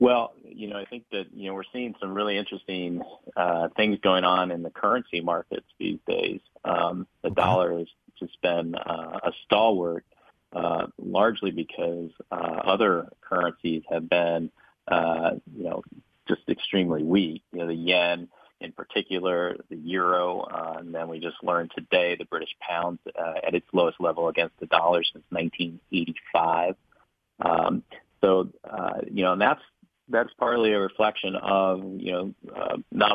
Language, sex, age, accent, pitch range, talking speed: English, male, 40-59, American, 85-95 Hz, 165 wpm